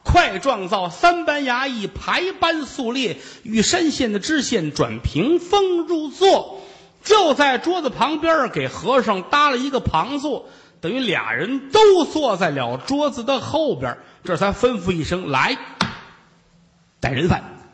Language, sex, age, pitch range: Chinese, male, 50-69, 185-310 Hz